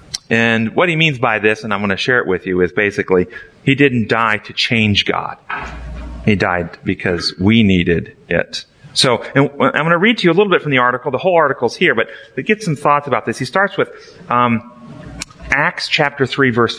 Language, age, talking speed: English, 40-59, 220 wpm